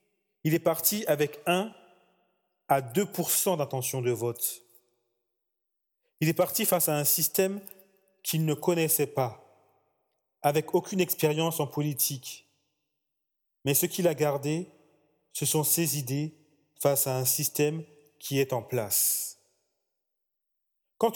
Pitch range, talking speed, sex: 135-170 Hz, 125 wpm, male